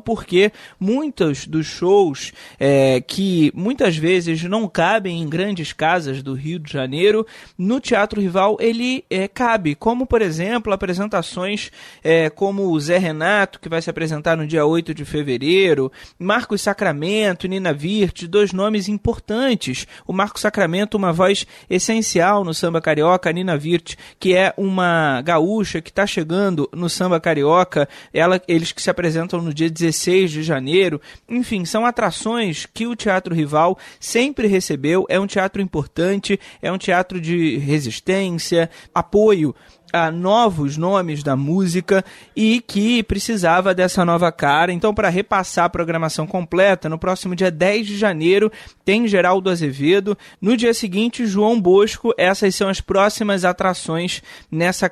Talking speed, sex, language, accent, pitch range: 150 wpm, male, Portuguese, Brazilian, 165-205 Hz